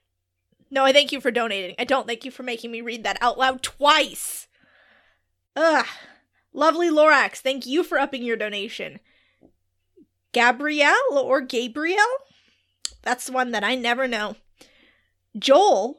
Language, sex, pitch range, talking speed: English, female, 235-295 Hz, 140 wpm